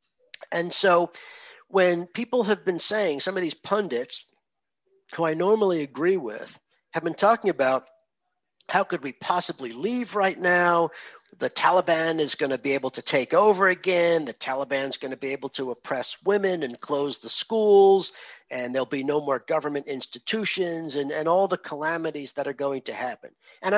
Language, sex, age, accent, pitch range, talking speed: English, male, 50-69, American, 145-185 Hz, 175 wpm